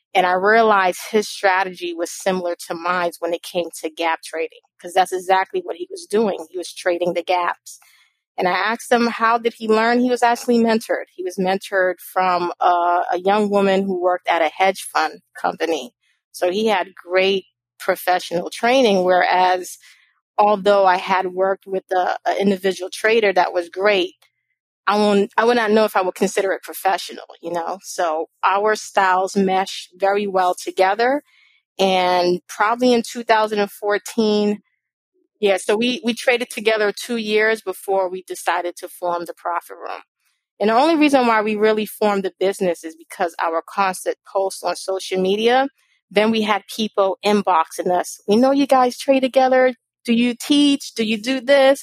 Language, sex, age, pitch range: English, female, 30-49, 180-225 Hz